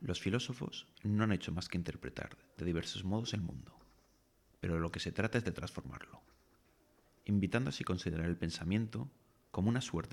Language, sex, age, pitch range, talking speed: English, male, 30-49, 85-110 Hz, 170 wpm